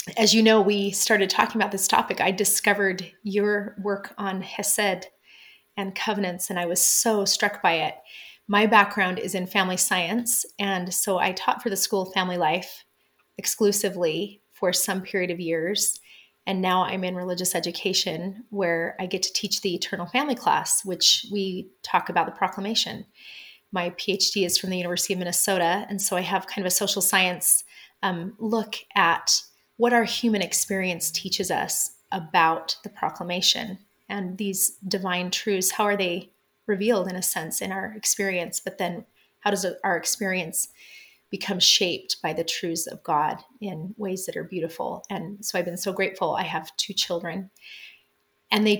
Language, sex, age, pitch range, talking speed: English, female, 30-49, 180-205 Hz, 170 wpm